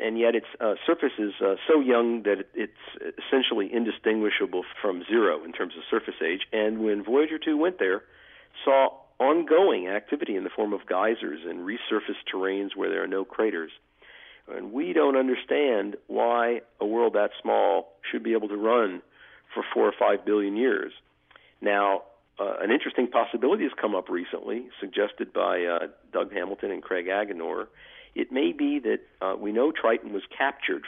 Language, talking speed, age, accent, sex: English, 170 wpm, 50-69, American, male